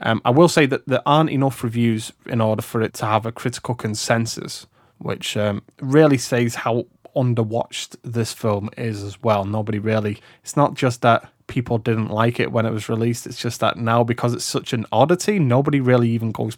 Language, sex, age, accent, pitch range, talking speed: English, male, 20-39, British, 115-150 Hz, 205 wpm